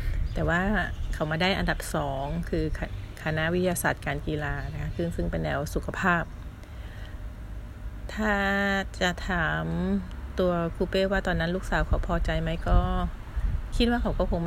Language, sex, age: Thai, female, 30-49